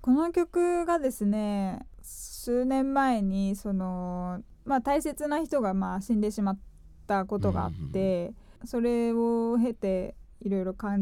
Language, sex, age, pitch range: Japanese, female, 20-39, 200-265 Hz